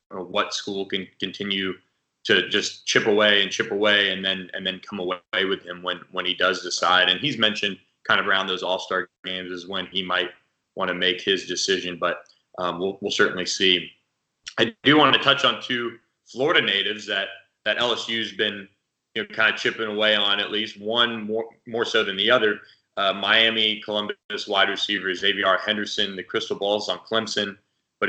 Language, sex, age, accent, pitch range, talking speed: English, male, 20-39, American, 95-110 Hz, 195 wpm